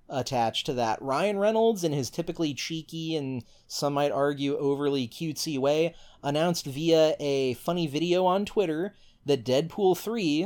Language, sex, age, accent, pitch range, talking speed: English, male, 30-49, American, 125-160 Hz, 150 wpm